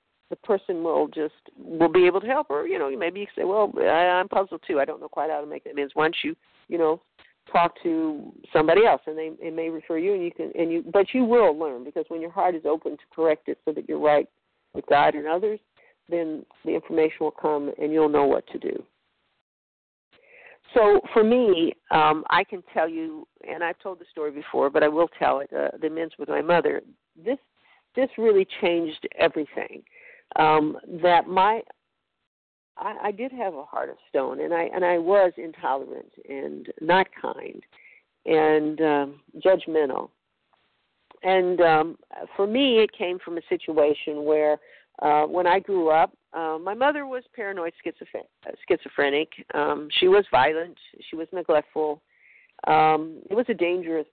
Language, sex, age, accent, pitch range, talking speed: English, female, 50-69, American, 155-245 Hz, 185 wpm